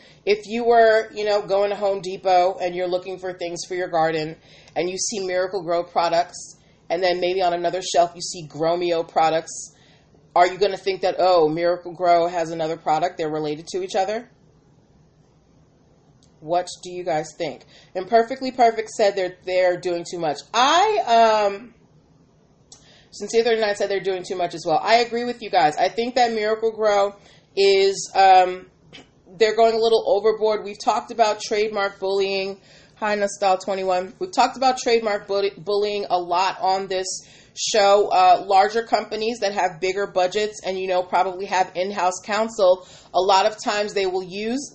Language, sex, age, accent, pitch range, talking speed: English, female, 30-49, American, 175-215 Hz, 175 wpm